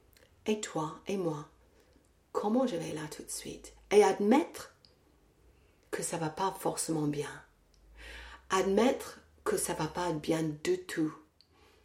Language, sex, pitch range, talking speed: French, female, 155-235 Hz, 145 wpm